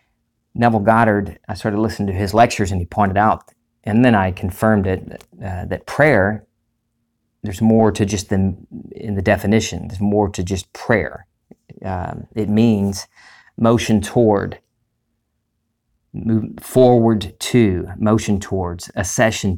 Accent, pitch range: American, 95-115 Hz